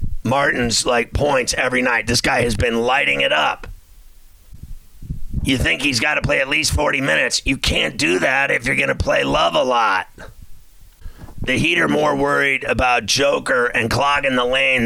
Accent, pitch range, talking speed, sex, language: American, 110-135 Hz, 180 wpm, male, English